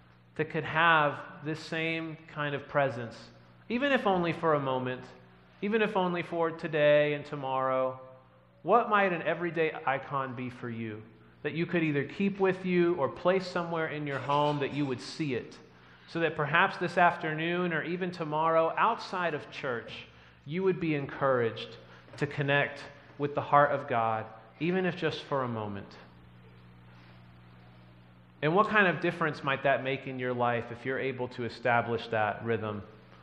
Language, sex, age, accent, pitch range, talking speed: English, male, 30-49, American, 105-150 Hz, 170 wpm